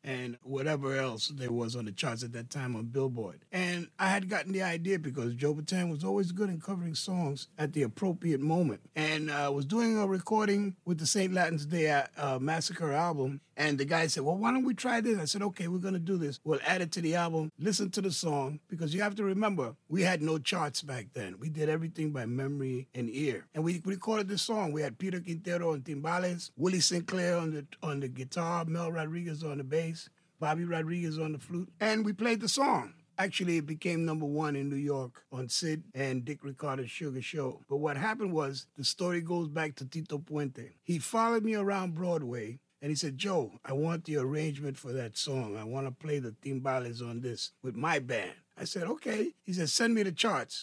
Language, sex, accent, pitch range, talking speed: English, male, American, 140-180 Hz, 225 wpm